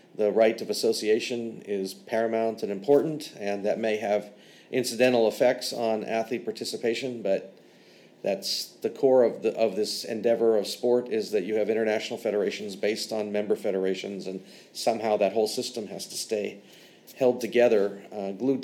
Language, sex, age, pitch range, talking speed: English, male, 40-59, 105-120 Hz, 160 wpm